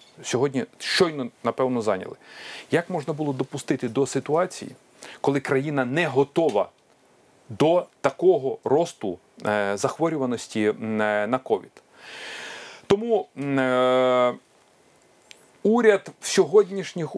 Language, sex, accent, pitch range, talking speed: Ukrainian, male, native, 130-200 Hz, 85 wpm